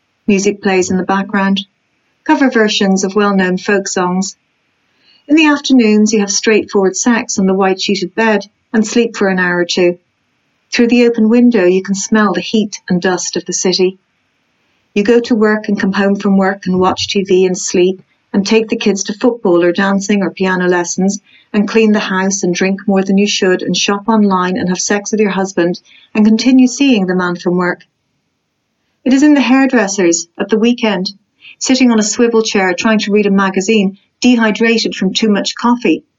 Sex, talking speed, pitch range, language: female, 195 wpm, 185-225 Hz, English